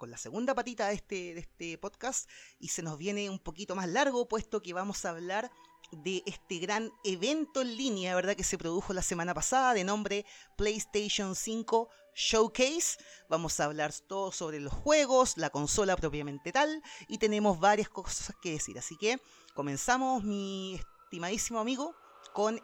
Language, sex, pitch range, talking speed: Spanish, female, 180-240 Hz, 165 wpm